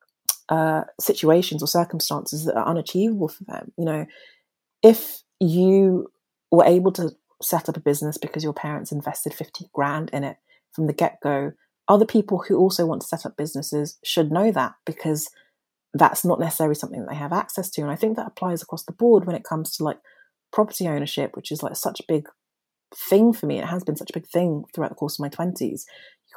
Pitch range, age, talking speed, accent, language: 150-190 Hz, 30-49, 210 wpm, British, English